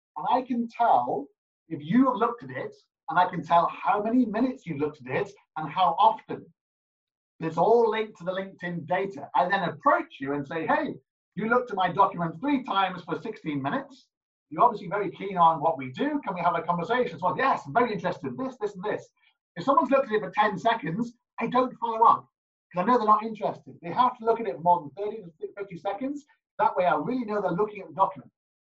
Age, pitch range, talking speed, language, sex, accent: 30-49, 170-240 Hz, 235 wpm, English, male, British